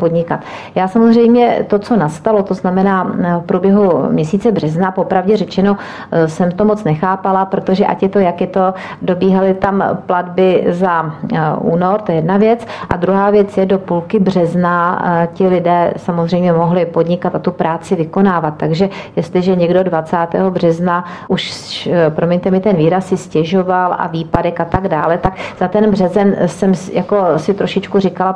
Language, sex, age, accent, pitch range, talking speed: Czech, female, 40-59, native, 170-195 Hz, 160 wpm